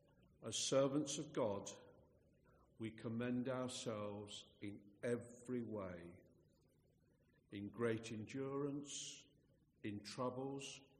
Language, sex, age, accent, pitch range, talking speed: English, male, 50-69, British, 110-140 Hz, 80 wpm